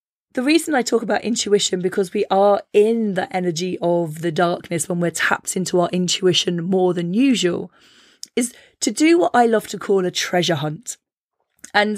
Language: English